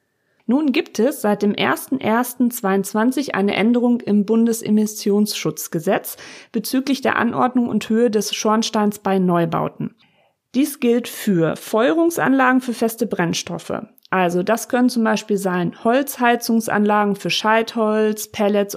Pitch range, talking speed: 205-245 Hz, 115 wpm